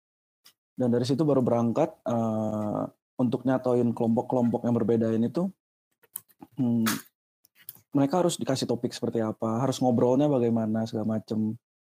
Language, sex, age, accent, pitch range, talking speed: Indonesian, male, 20-39, native, 115-135 Hz, 120 wpm